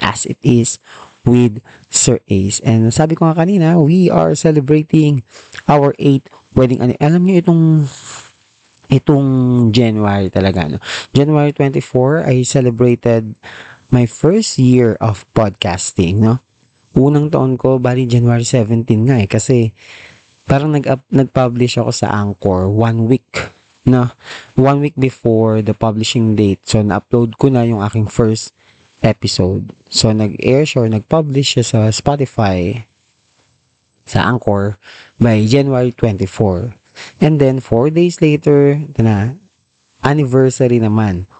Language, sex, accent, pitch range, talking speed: Filipino, male, native, 110-140 Hz, 125 wpm